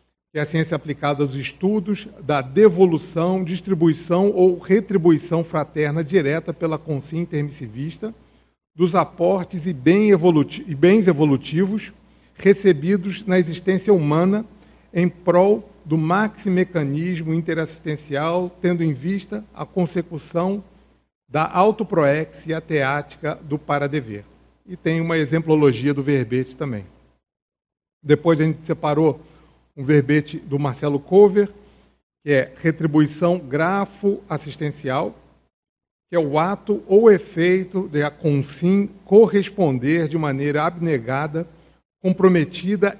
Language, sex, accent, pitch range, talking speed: Portuguese, male, Brazilian, 150-185 Hz, 105 wpm